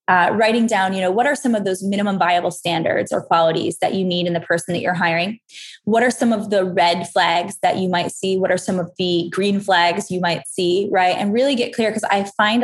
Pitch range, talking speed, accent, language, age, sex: 180-220 Hz, 250 wpm, American, English, 20-39, female